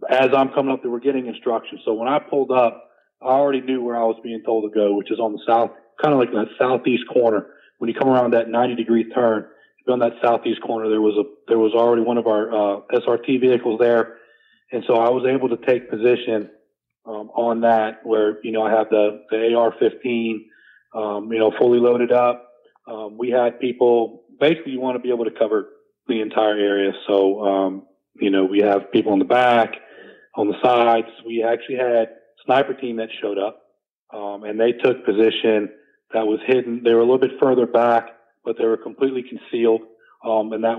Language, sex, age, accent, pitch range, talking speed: English, male, 40-59, American, 110-125 Hz, 210 wpm